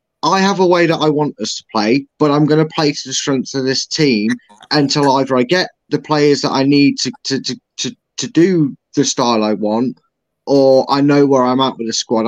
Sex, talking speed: male, 240 wpm